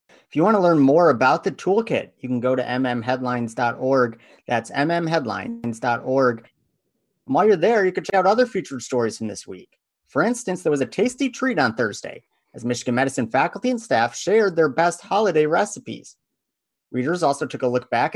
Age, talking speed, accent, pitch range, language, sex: 30-49, 185 wpm, American, 125-195 Hz, English, male